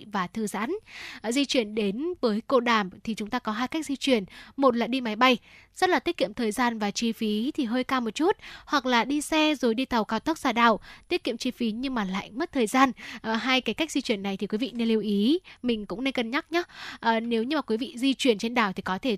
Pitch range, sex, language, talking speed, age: 225-270 Hz, female, Vietnamese, 280 wpm, 10-29